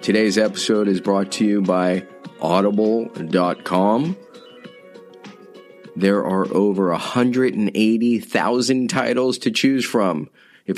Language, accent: English, American